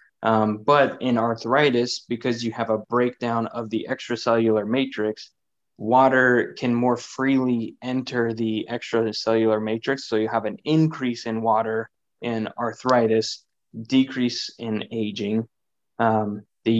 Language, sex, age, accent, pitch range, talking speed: English, male, 20-39, American, 115-130 Hz, 125 wpm